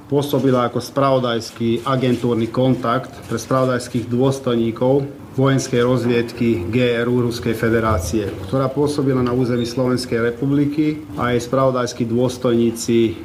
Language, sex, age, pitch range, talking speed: Slovak, male, 30-49, 115-135 Hz, 105 wpm